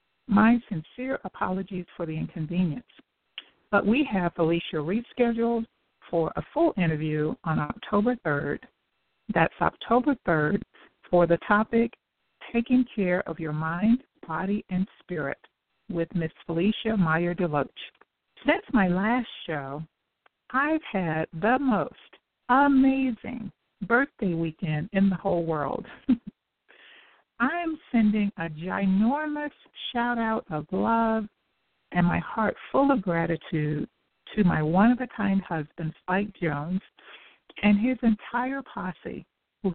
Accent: American